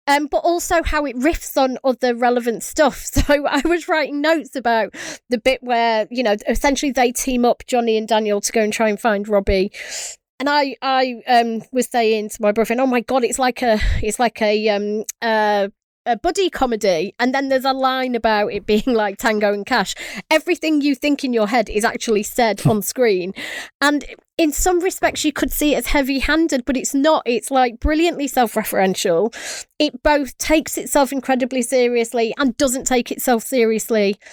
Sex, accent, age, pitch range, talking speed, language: female, British, 30-49, 225-290 Hz, 195 wpm, English